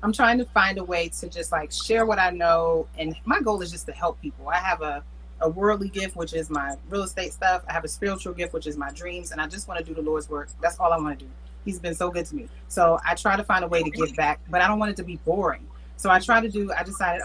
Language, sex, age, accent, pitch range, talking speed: English, female, 30-49, American, 165-220 Hz, 305 wpm